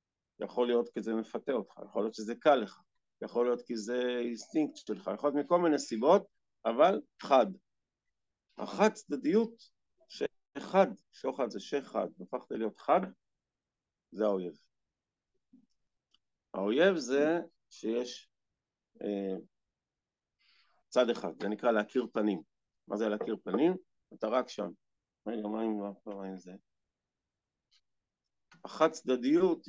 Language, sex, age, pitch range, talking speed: Hebrew, male, 50-69, 110-165 Hz, 105 wpm